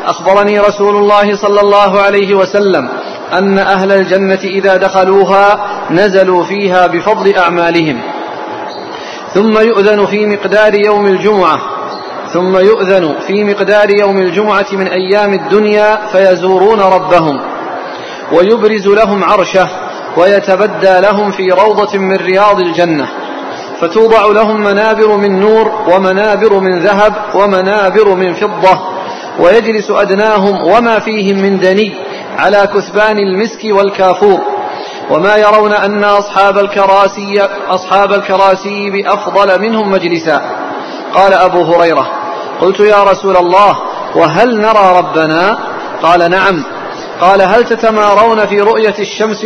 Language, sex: Arabic, male